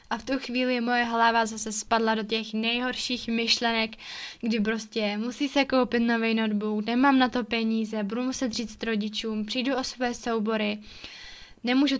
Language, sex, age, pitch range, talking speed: Czech, female, 10-29, 225-250 Hz, 165 wpm